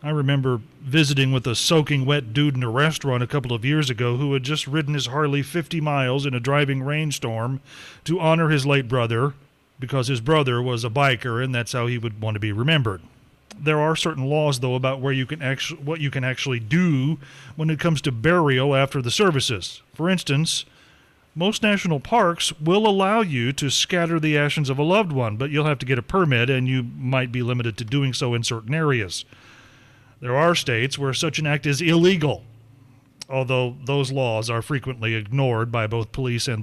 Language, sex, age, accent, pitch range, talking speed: English, male, 40-59, American, 125-155 Hz, 205 wpm